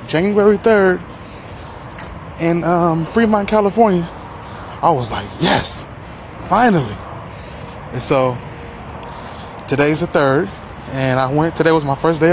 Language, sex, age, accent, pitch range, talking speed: English, male, 20-39, American, 125-175 Hz, 115 wpm